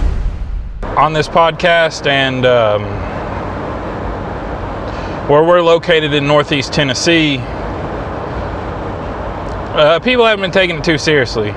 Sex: male